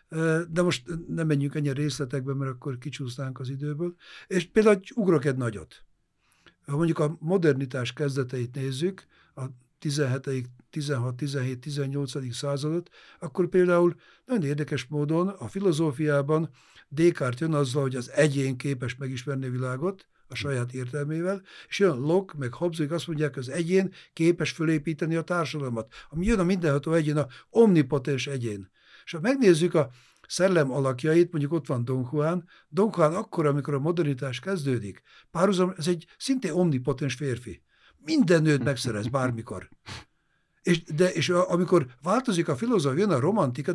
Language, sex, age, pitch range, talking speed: Hungarian, male, 60-79, 135-175 Hz, 145 wpm